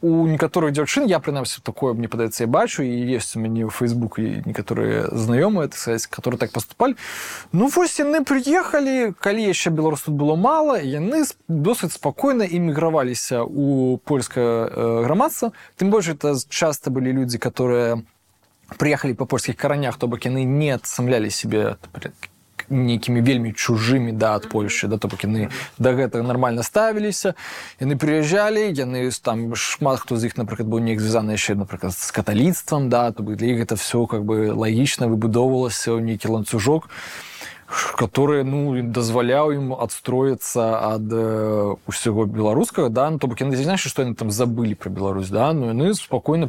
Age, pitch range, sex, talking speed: 20-39, 115-150 Hz, male, 155 wpm